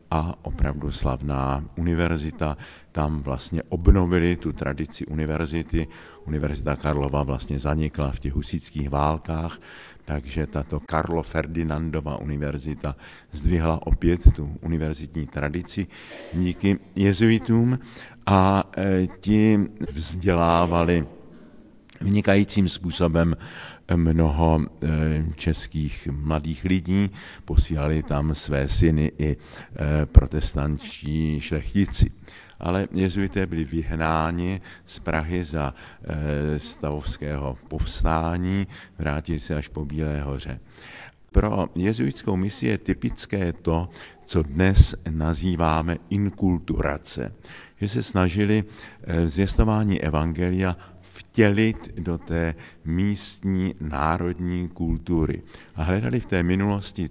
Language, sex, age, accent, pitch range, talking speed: Czech, male, 50-69, native, 75-95 Hz, 90 wpm